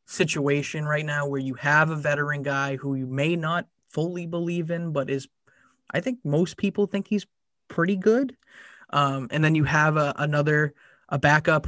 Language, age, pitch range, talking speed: English, 20-39, 140-165 Hz, 180 wpm